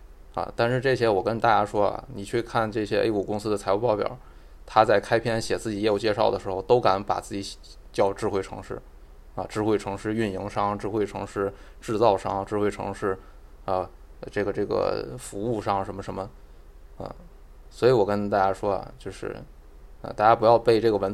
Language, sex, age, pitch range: Chinese, male, 20-39, 95-110 Hz